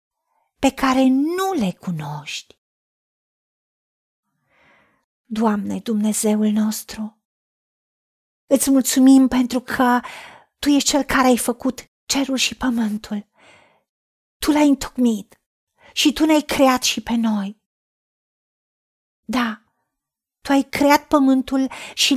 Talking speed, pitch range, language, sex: 100 wpm, 225-285 Hz, Romanian, female